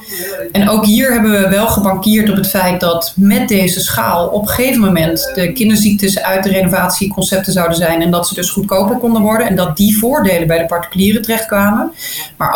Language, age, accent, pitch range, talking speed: Dutch, 30-49, Dutch, 180-215 Hz, 195 wpm